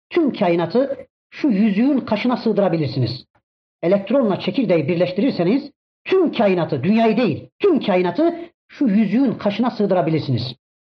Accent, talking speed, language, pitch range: native, 105 wpm, Turkish, 180-275 Hz